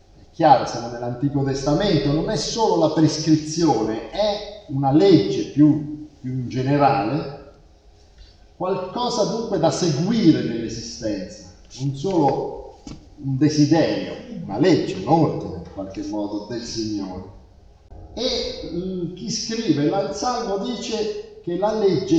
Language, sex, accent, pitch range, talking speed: Italian, male, native, 130-190 Hz, 120 wpm